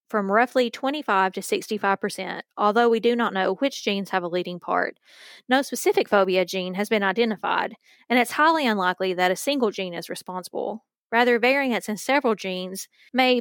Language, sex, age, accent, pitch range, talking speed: English, female, 20-39, American, 195-255 Hz, 180 wpm